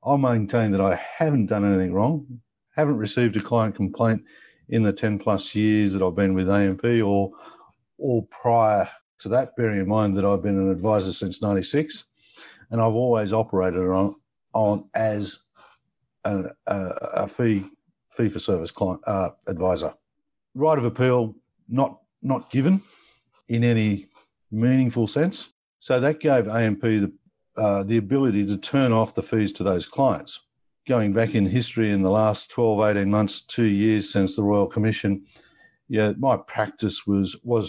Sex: male